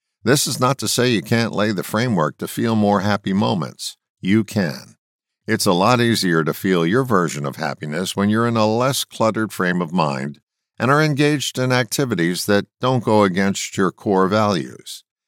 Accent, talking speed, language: American, 190 wpm, English